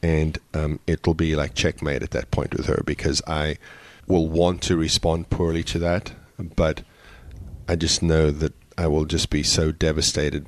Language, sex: English, male